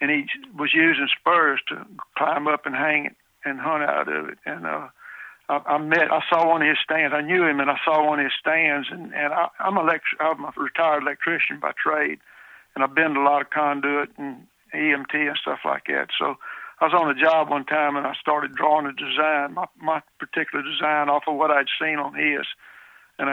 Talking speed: 230 wpm